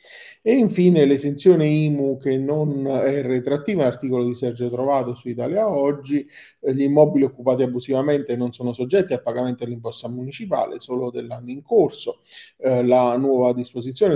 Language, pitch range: Italian, 120-140 Hz